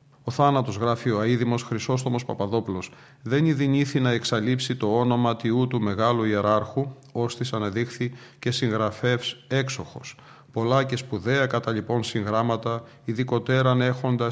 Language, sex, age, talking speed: Greek, male, 40-59, 130 wpm